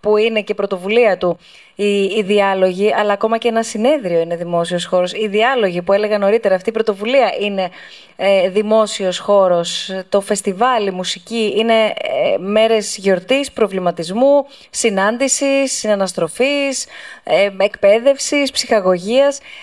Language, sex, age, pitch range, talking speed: Greek, female, 20-39, 195-235 Hz, 120 wpm